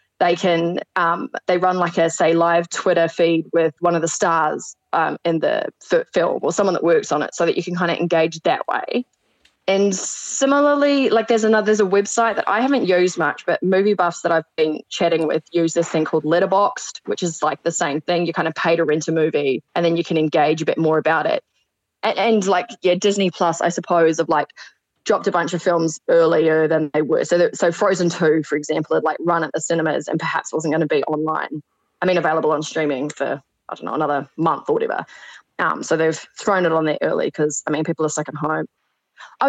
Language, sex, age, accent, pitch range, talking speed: English, female, 20-39, Australian, 160-200 Hz, 235 wpm